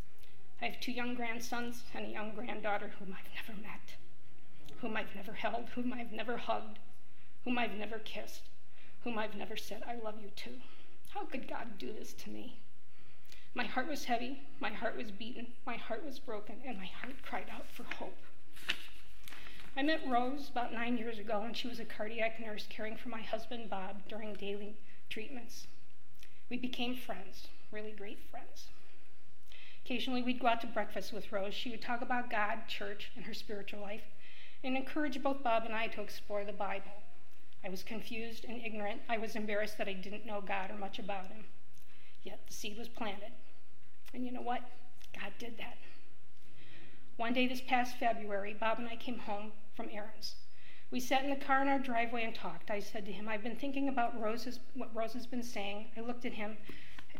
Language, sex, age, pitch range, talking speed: English, female, 40-59, 210-245 Hz, 190 wpm